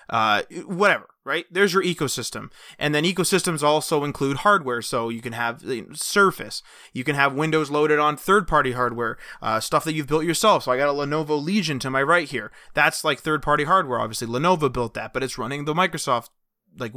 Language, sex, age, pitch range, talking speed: English, male, 20-39, 130-165 Hz, 205 wpm